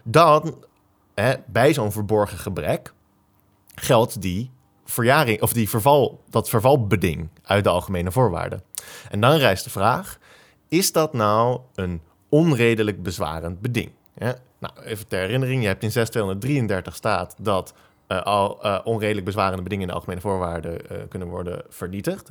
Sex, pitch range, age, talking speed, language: male, 95-125 Hz, 20-39, 150 wpm, English